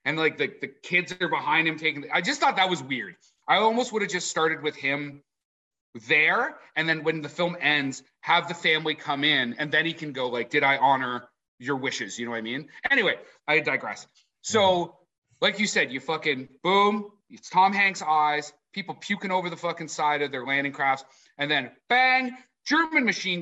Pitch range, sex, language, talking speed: 135-180 Hz, male, English, 210 wpm